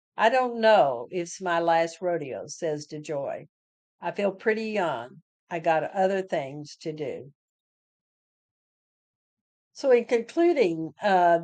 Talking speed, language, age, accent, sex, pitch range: 125 wpm, English, 50-69, American, female, 165-205 Hz